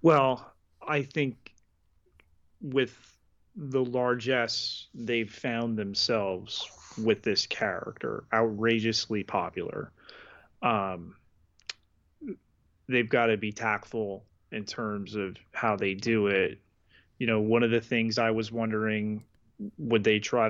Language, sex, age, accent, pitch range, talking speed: English, male, 30-49, American, 100-115 Hz, 115 wpm